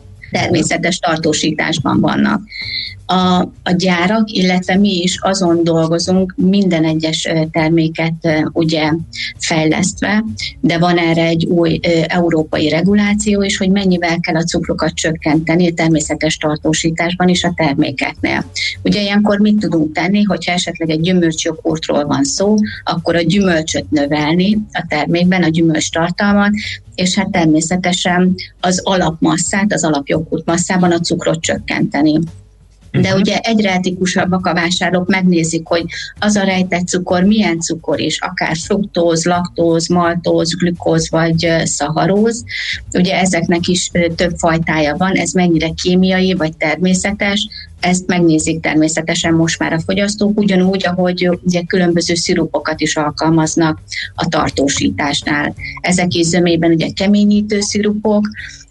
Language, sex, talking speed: Hungarian, female, 125 wpm